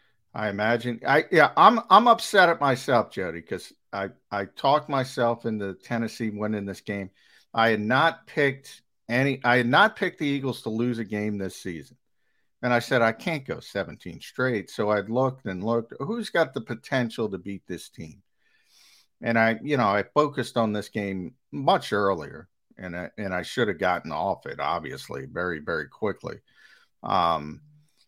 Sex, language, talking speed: male, English, 175 wpm